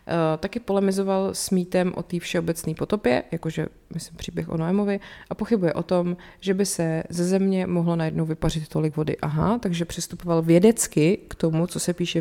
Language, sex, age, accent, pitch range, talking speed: Czech, female, 30-49, native, 165-195 Hz, 180 wpm